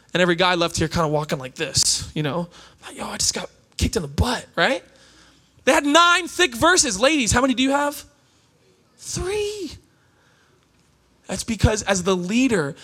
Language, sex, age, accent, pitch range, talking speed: English, male, 20-39, American, 170-260 Hz, 180 wpm